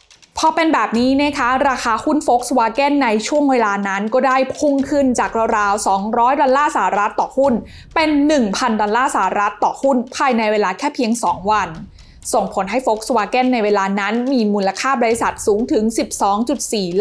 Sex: female